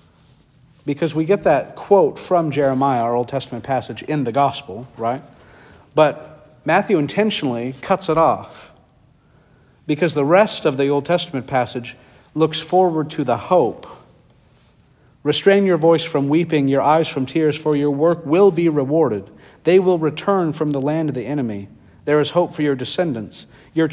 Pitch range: 125-155 Hz